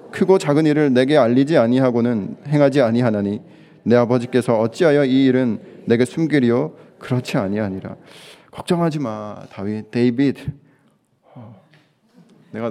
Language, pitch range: Korean, 120-160 Hz